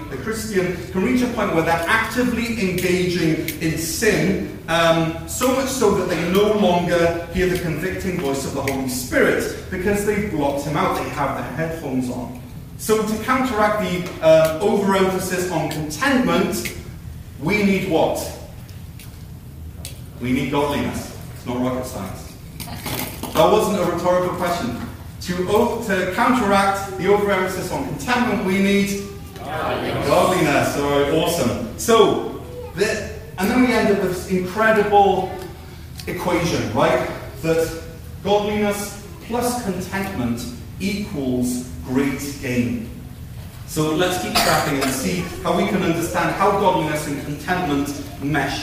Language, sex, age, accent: English, male, 30-49, British